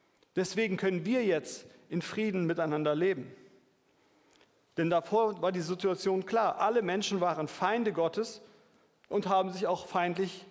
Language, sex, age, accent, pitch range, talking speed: German, male, 40-59, German, 175-215 Hz, 135 wpm